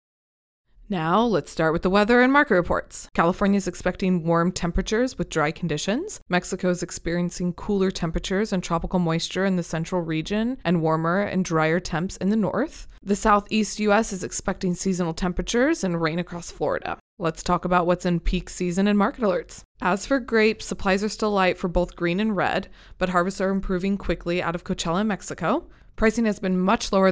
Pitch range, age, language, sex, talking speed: 175-210 Hz, 20-39, English, female, 185 wpm